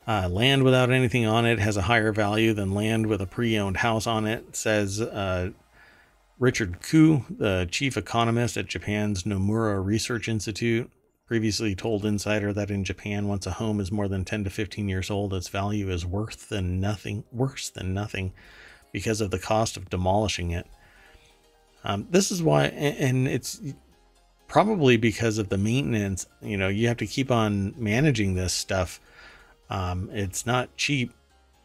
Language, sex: English, male